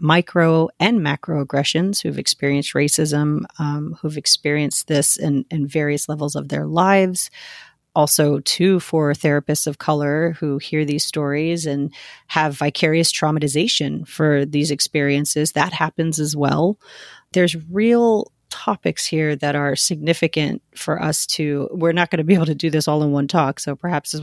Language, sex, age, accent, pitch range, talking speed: English, female, 40-59, American, 145-175 Hz, 160 wpm